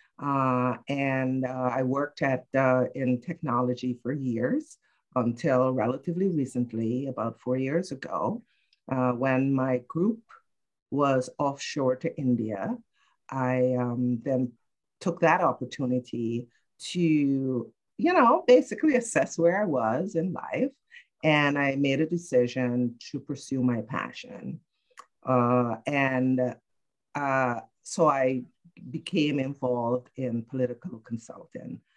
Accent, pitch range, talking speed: American, 125-160 Hz, 115 wpm